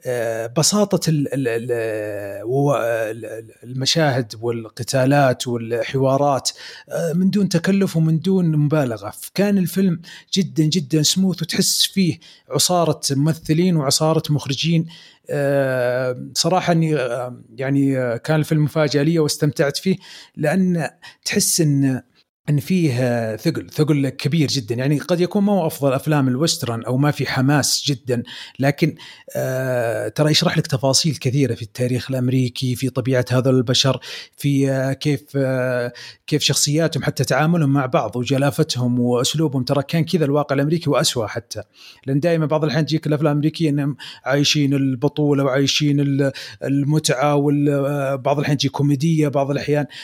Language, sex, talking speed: Arabic, male, 125 wpm